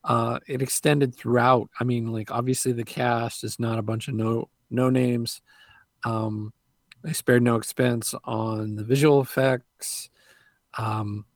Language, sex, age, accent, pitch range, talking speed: English, male, 40-59, American, 110-125 Hz, 150 wpm